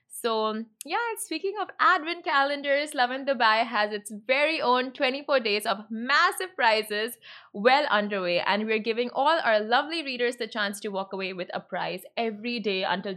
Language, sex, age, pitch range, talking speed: Arabic, female, 20-39, 210-280 Hz, 175 wpm